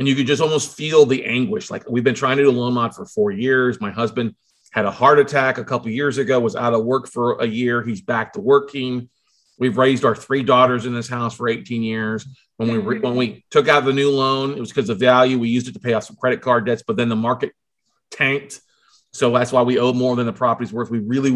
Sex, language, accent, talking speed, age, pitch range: male, English, American, 265 wpm, 40-59, 120-150 Hz